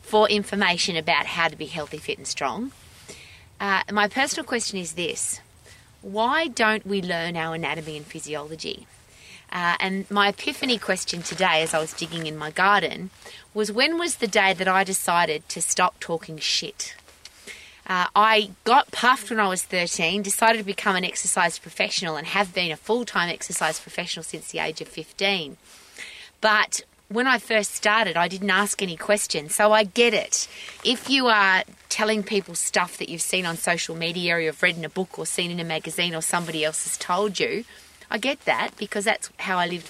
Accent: Australian